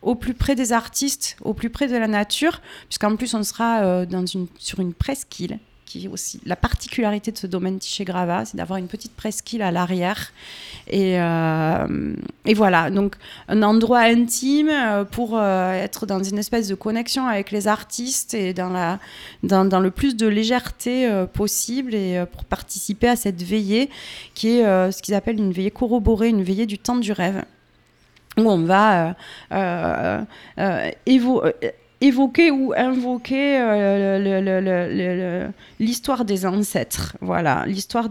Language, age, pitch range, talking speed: French, 30-49, 190-235 Hz, 170 wpm